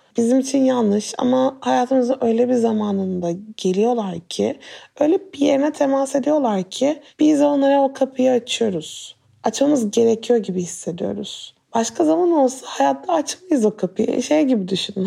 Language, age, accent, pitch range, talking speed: Turkish, 30-49, native, 210-275 Hz, 140 wpm